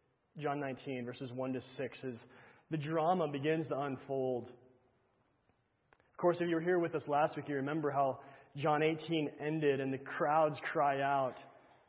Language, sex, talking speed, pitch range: English, male, 165 wpm, 140-175 Hz